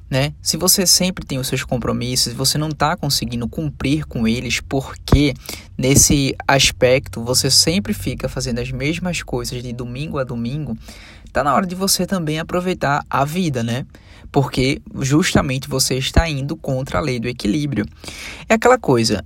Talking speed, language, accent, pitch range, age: 165 wpm, Portuguese, Brazilian, 120-160 Hz, 20-39